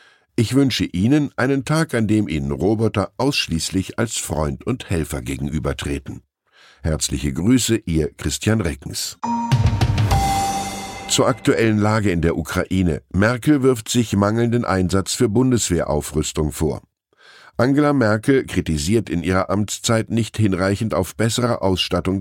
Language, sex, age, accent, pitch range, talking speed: German, male, 10-29, German, 85-115 Hz, 120 wpm